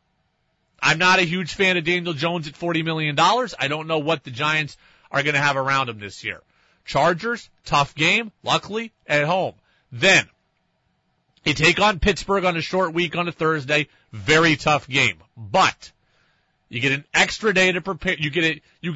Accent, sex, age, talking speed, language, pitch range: American, male, 30-49, 185 wpm, English, 145-180 Hz